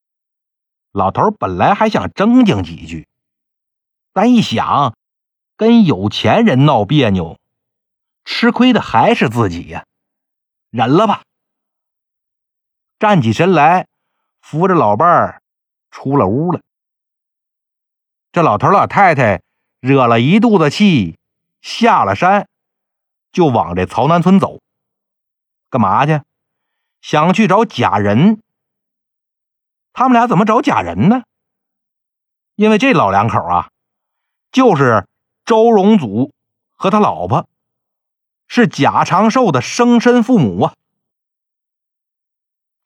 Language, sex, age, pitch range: Chinese, male, 50-69, 155-230 Hz